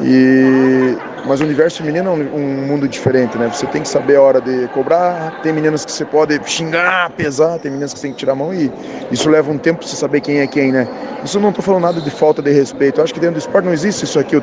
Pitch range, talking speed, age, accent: 145-180 Hz, 265 wpm, 20-39, Brazilian